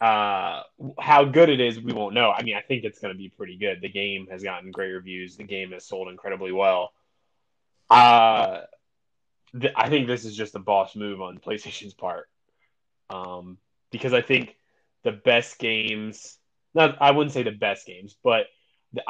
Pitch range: 100-130 Hz